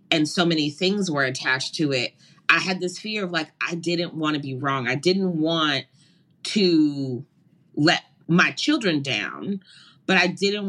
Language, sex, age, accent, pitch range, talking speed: English, female, 30-49, American, 155-185 Hz, 175 wpm